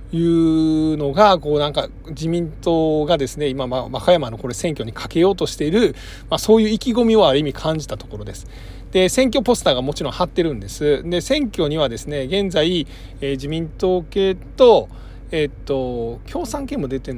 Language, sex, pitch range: Japanese, male, 120-180 Hz